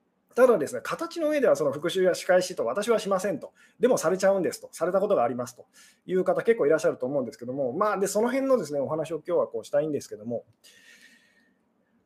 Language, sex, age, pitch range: Japanese, male, 20-39, 175-285 Hz